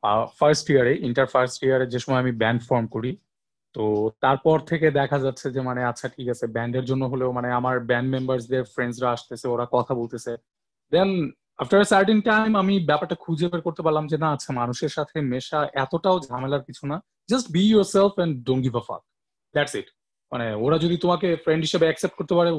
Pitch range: 125-170 Hz